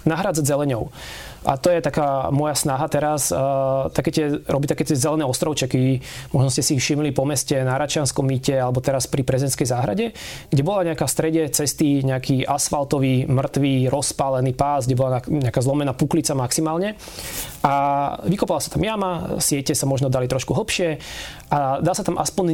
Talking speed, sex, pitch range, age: 170 wpm, male, 135-160 Hz, 20-39